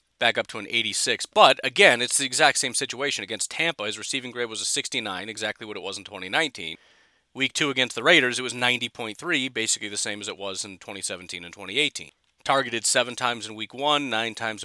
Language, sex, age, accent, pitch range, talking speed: English, male, 40-59, American, 105-135 Hz, 215 wpm